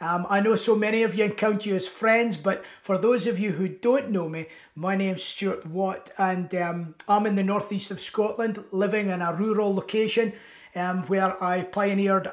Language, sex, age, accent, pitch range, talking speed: English, male, 30-49, British, 180-215 Hz, 205 wpm